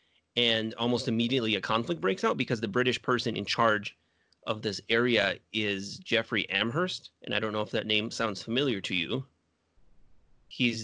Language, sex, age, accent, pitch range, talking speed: English, male, 30-49, American, 105-120 Hz, 170 wpm